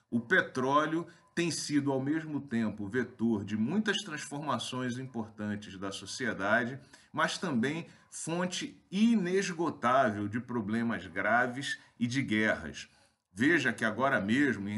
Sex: male